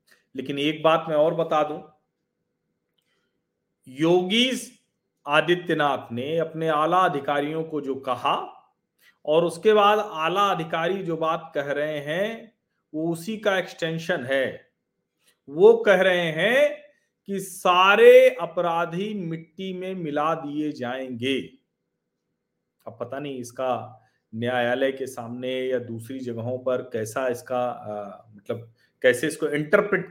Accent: native